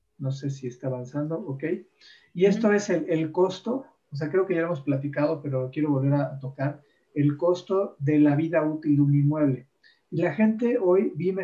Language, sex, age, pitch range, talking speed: Spanish, male, 40-59, 140-165 Hz, 205 wpm